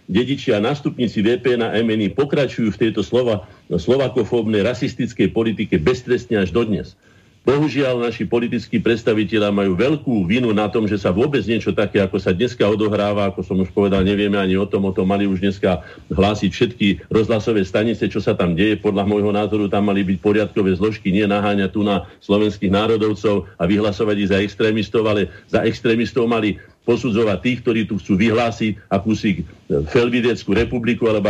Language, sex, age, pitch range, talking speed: Slovak, male, 50-69, 105-125 Hz, 170 wpm